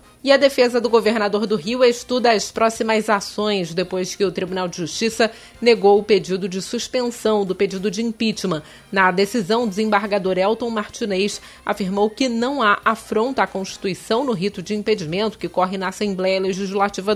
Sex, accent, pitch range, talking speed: female, Brazilian, 195-235 Hz, 170 wpm